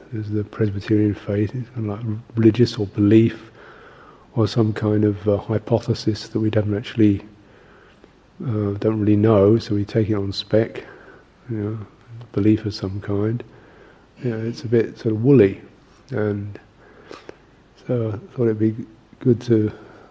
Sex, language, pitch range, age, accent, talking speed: male, English, 100-115 Hz, 50-69, British, 150 wpm